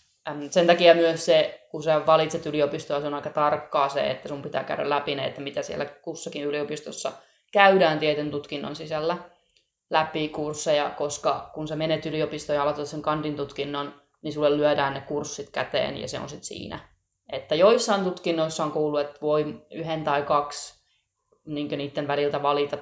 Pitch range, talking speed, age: 145-160 Hz, 165 wpm, 20-39